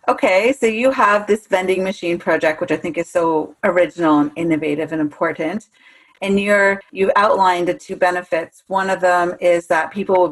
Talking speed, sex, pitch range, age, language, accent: 185 wpm, female, 170-215 Hz, 40-59, English, American